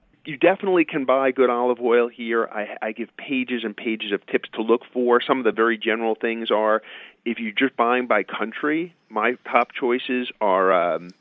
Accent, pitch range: American, 105-125 Hz